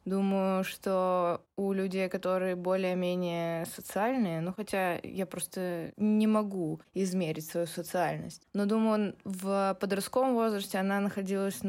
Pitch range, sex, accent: 180-210 Hz, female, native